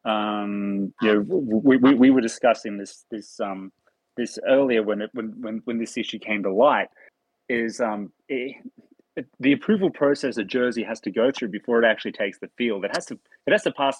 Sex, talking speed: male, 210 wpm